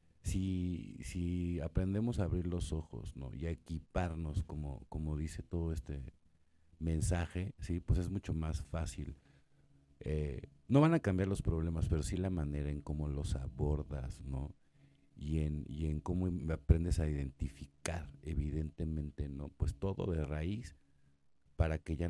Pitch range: 75-90 Hz